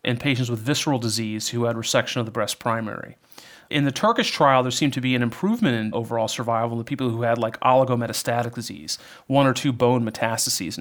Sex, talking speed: male, 210 wpm